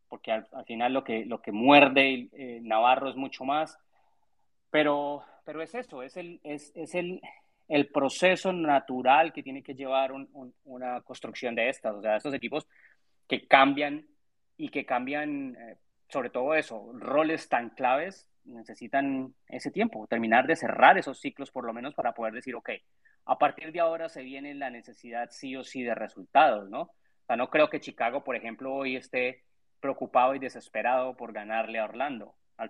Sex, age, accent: male, 30-49, Colombian